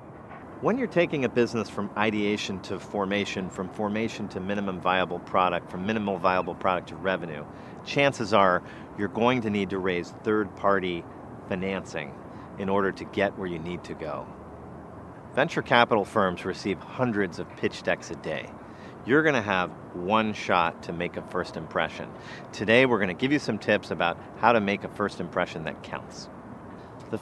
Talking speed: 170 wpm